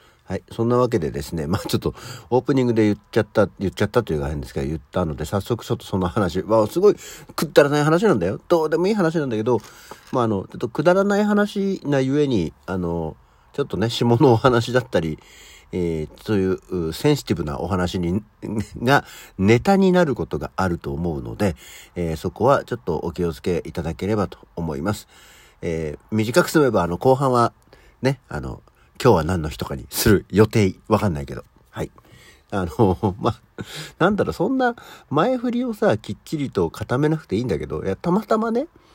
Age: 50-69